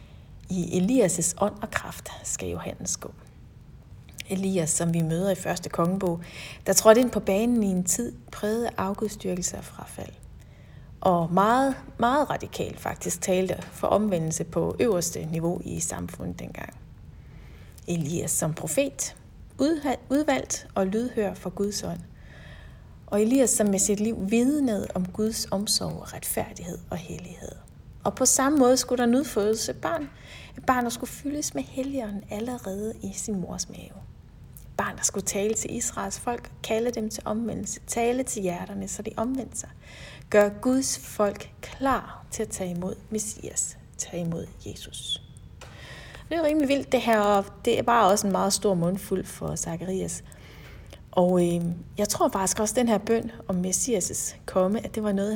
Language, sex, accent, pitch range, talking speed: Danish, female, native, 185-235 Hz, 160 wpm